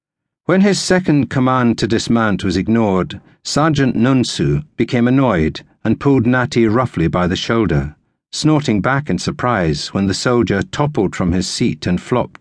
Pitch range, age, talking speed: 95-130 Hz, 60-79, 155 wpm